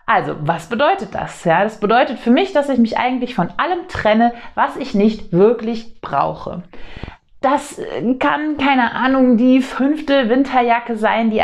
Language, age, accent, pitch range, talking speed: German, 30-49, German, 195-250 Hz, 155 wpm